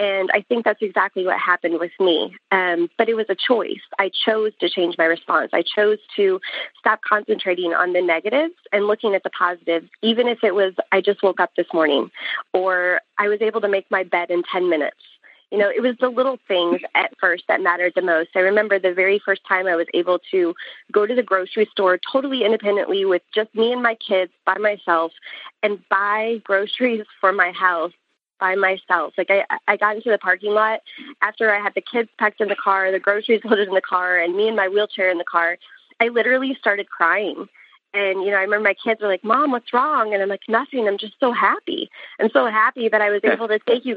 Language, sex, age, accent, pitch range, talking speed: English, female, 20-39, American, 185-230 Hz, 225 wpm